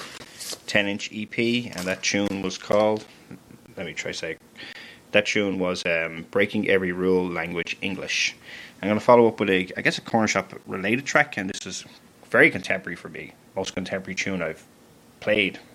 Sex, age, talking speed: male, 20-39, 175 wpm